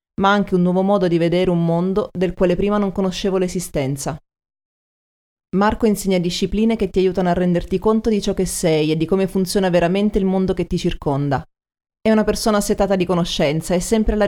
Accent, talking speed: native, 200 wpm